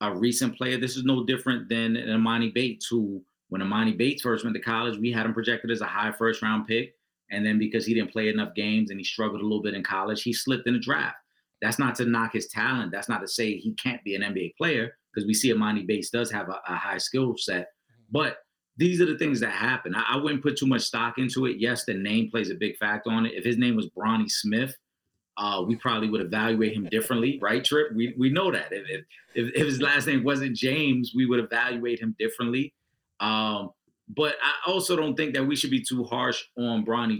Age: 30-49